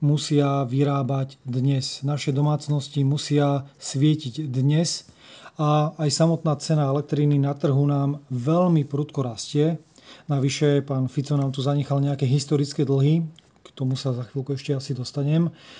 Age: 30-49